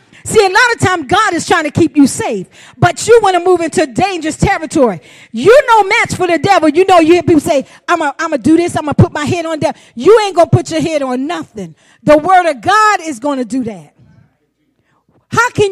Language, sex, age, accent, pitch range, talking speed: English, female, 40-59, American, 285-380 Hz, 250 wpm